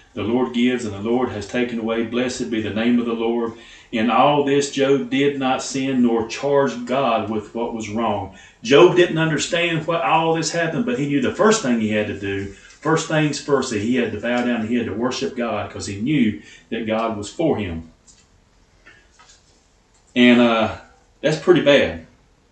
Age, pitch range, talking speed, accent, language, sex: 40-59, 110-135 Hz, 200 wpm, American, English, male